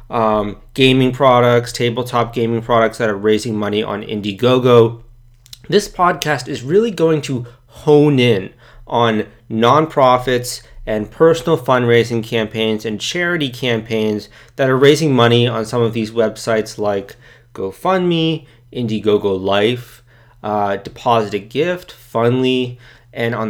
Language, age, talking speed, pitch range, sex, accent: English, 30-49, 125 wpm, 110-130 Hz, male, American